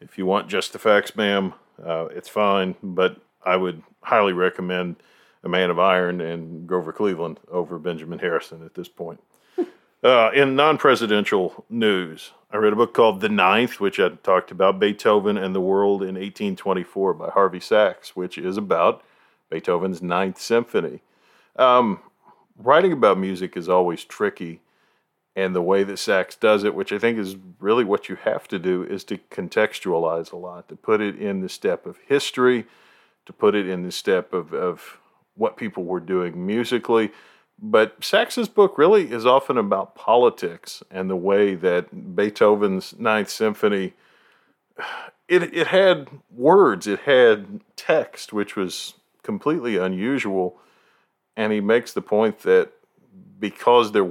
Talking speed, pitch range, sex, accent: 155 wpm, 95-135 Hz, male, American